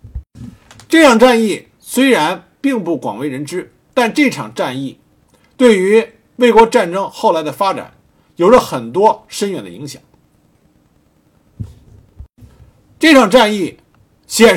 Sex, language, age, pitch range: male, Chinese, 50-69, 155-245 Hz